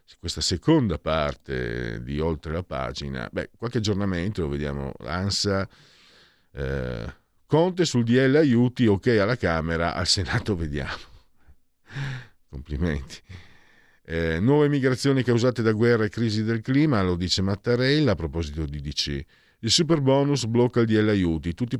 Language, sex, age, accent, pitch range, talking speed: Italian, male, 50-69, native, 80-115 Hz, 140 wpm